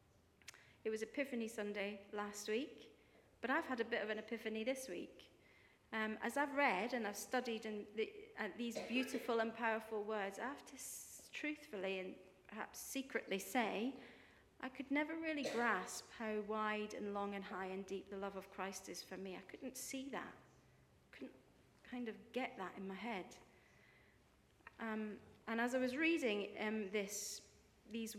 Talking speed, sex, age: 170 wpm, female, 40-59